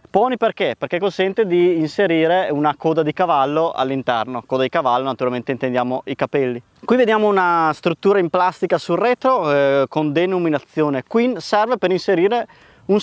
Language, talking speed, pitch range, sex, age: Italian, 155 wpm, 145-200 Hz, male, 20-39